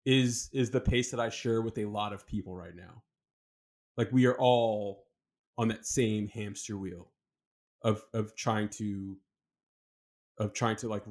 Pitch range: 105-130 Hz